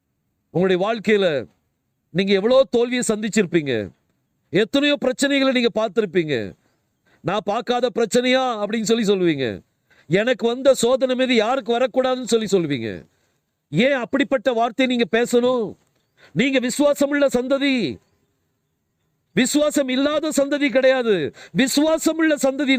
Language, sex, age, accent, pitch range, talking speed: Tamil, male, 50-69, native, 205-265 Hz, 95 wpm